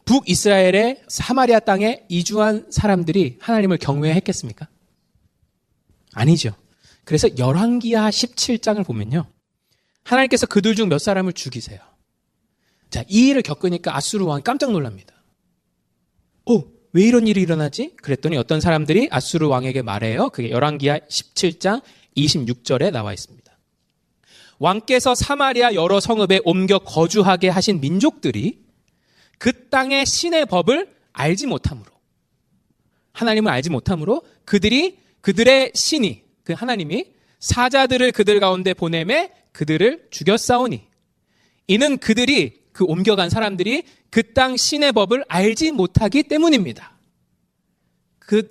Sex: male